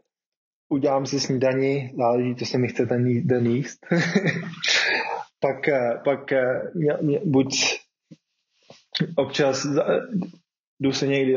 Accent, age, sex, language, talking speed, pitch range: native, 20-39, male, Czech, 105 wpm, 115-130 Hz